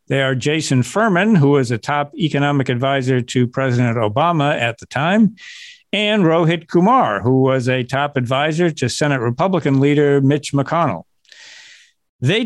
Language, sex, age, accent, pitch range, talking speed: English, male, 50-69, American, 135-175 Hz, 150 wpm